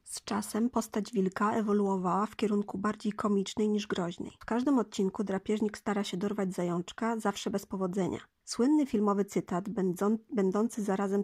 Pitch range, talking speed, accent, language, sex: 195-230 Hz, 145 wpm, native, Polish, female